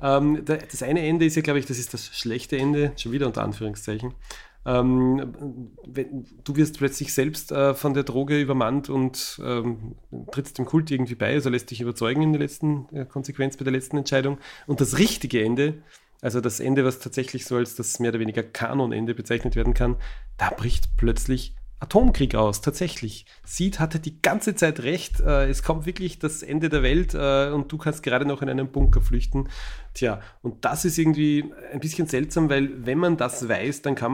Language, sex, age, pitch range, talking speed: German, male, 30-49, 120-145 Hz, 185 wpm